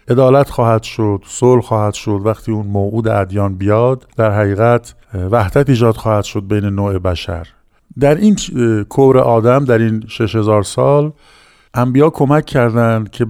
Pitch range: 105-135 Hz